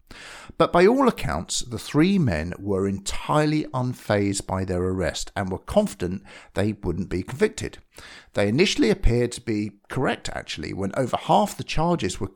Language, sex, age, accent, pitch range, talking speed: English, male, 50-69, British, 95-135 Hz, 160 wpm